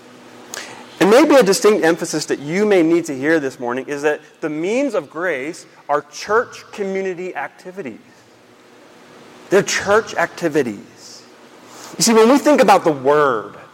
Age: 30-49